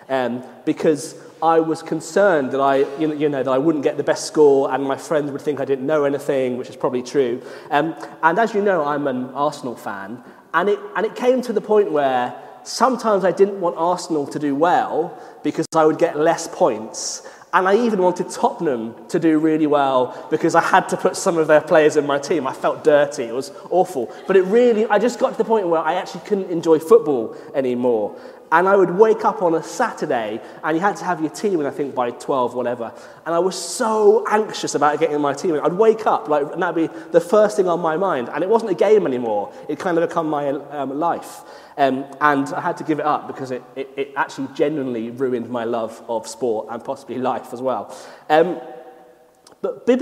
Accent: British